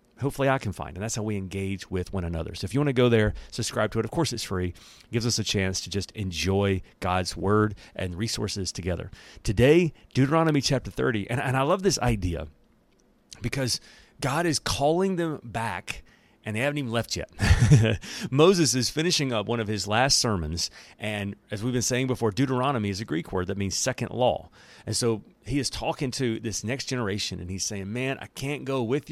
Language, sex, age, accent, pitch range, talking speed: English, male, 40-59, American, 100-140 Hz, 210 wpm